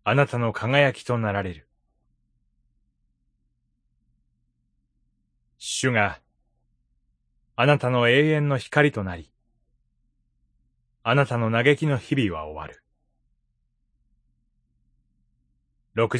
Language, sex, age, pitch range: Japanese, male, 30-49, 85-145 Hz